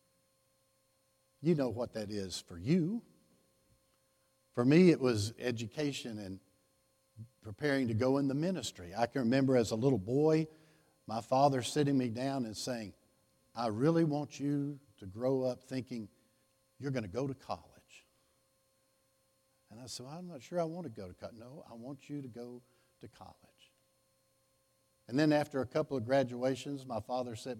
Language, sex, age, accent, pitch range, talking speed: English, male, 60-79, American, 115-145 Hz, 165 wpm